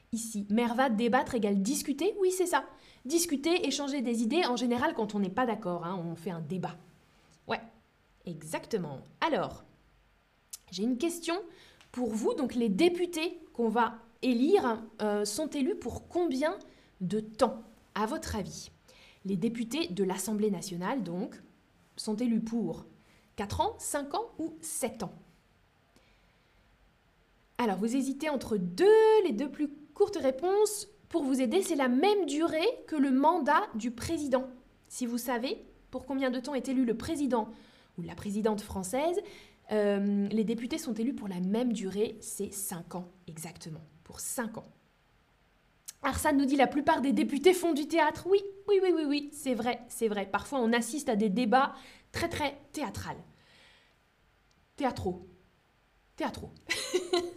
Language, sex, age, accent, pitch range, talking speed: French, female, 20-39, French, 215-310 Hz, 155 wpm